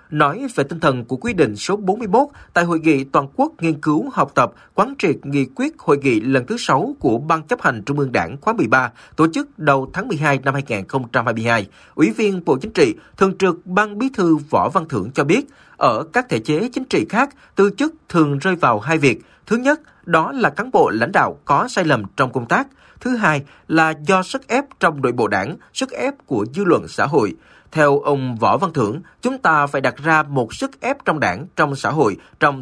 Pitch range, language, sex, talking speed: 135-200 Hz, Vietnamese, male, 225 wpm